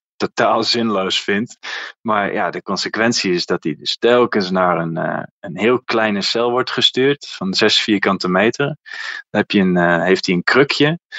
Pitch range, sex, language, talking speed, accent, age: 105-145 Hz, male, Dutch, 160 wpm, Dutch, 20-39